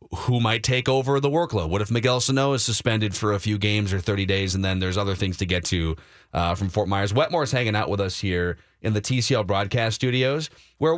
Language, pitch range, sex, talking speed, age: English, 105-150 Hz, male, 240 wpm, 30-49